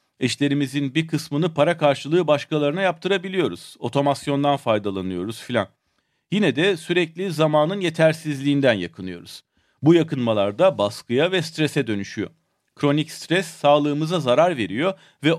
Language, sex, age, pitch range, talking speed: Turkish, male, 40-59, 130-175 Hz, 115 wpm